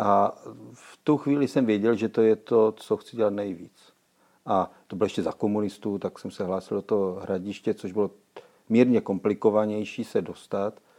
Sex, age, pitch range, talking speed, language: male, 50-69, 95-110 Hz, 180 wpm, Czech